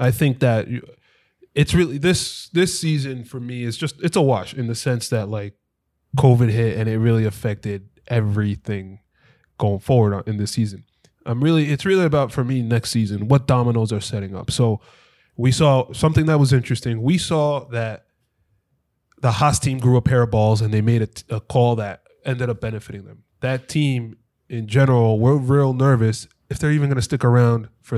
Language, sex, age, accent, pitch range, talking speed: English, male, 20-39, American, 110-140 Hz, 195 wpm